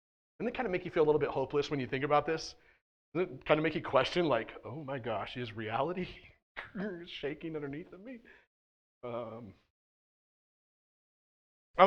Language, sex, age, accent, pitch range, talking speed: English, male, 30-49, American, 135-175 Hz, 180 wpm